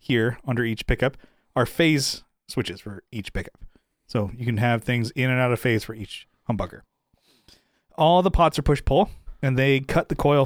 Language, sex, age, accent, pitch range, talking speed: English, male, 30-49, American, 115-135 Hz, 190 wpm